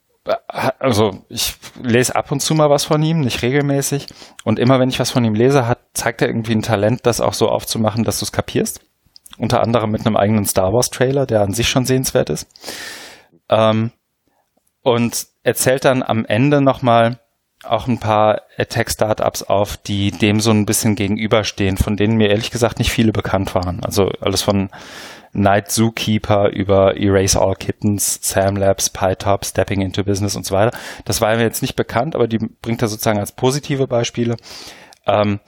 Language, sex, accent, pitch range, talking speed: German, male, German, 100-120 Hz, 185 wpm